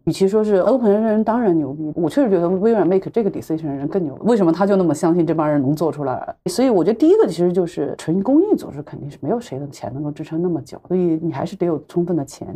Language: Chinese